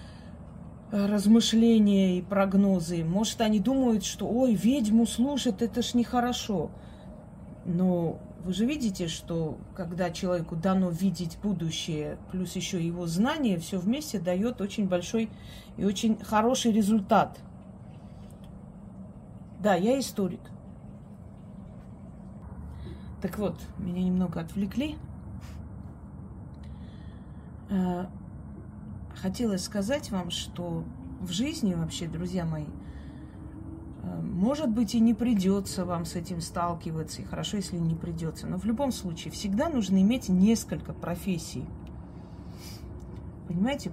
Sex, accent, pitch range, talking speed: female, native, 175-220 Hz, 105 wpm